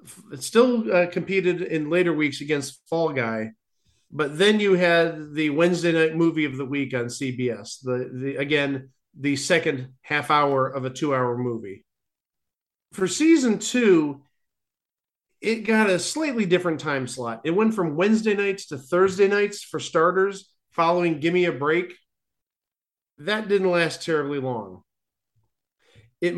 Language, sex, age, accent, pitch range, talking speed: English, male, 40-59, American, 145-195 Hz, 145 wpm